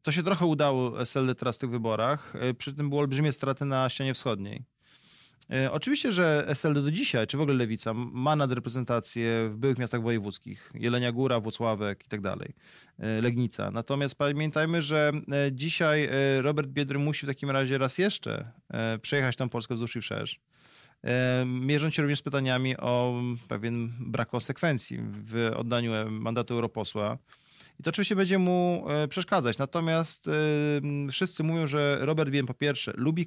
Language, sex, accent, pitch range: Polish, male, native, 120-150 Hz